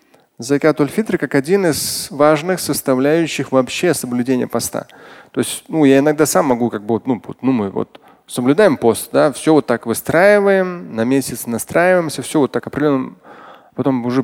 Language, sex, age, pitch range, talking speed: Russian, male, 20-39, 115-150 Hz, 175 wpm